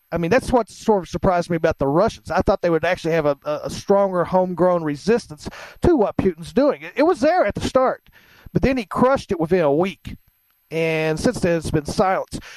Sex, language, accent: male, English, American